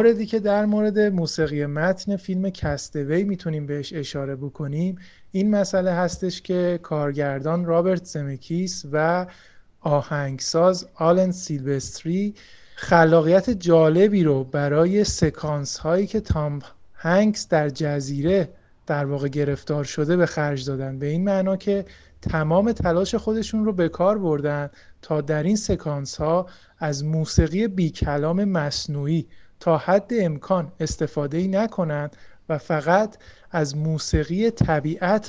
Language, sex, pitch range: Persian, male, 145-185 Hz